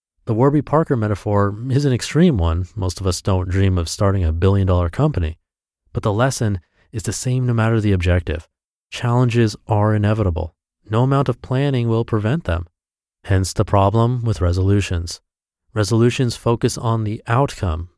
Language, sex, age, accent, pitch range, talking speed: English, male, 30-49, American, 90-125 Hz, 160 wpm